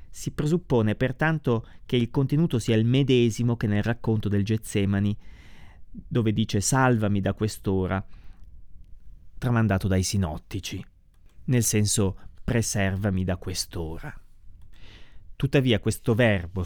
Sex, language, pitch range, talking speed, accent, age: male, Italian, 90-125 Hz, 110 wpm, native, 30-49